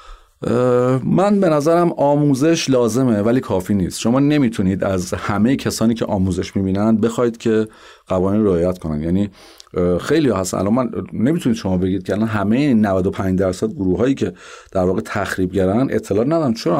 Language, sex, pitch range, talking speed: Persian, male, 100-130 Hz, 155 wpm